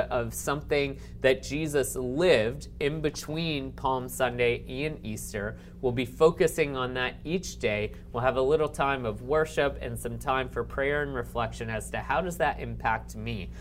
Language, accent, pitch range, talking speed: English, American, 120-145 Hz, 170 wpm